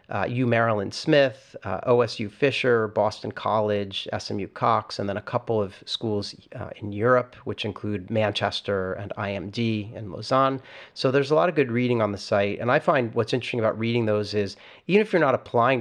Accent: American